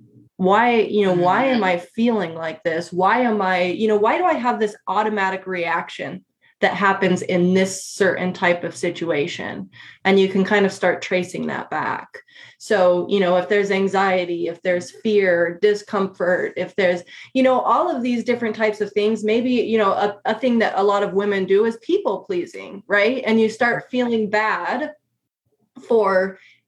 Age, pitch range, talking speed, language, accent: 20-39, 185-240 Hz, 180 wpm, English, American